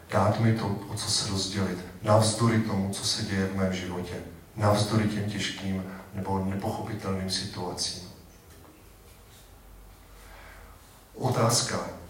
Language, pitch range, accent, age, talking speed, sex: Czech, 95-115 Hz, native, 40-59, 110 wpm, male